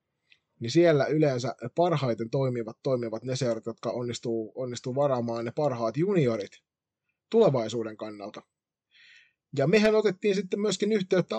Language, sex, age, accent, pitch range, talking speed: Finnish, male, 20-39, native, 120-150 Hz, 120 wpm